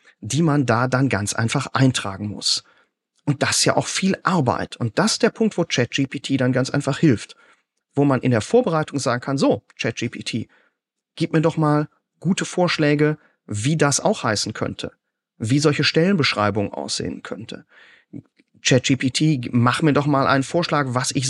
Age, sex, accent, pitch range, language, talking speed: 40-59, male, German, 125-150 Hz, German, 170 wpm